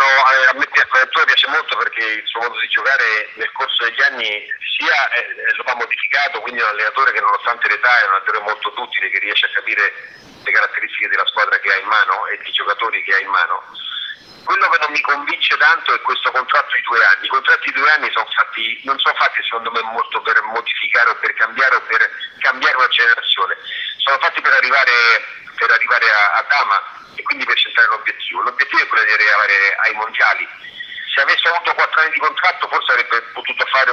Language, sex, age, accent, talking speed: Italian, male, 40-59, native, 200 wpm